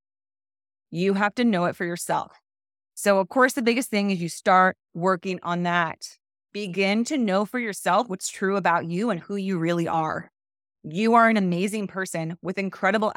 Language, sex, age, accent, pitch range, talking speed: English, female, 30-49, American, 165-200 Hz, 180 wpm